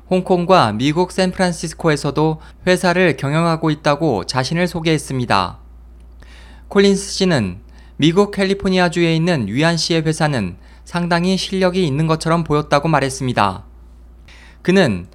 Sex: male